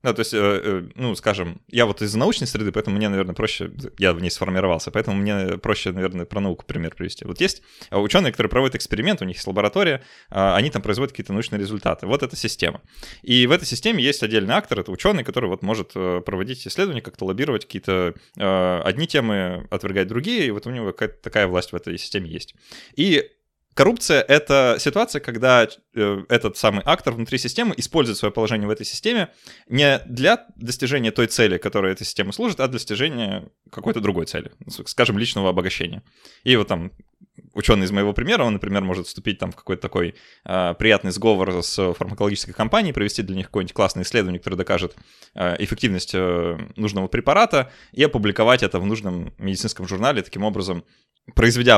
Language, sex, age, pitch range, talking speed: Russian, male, 20-39, 95-120 Hz, 180 wpm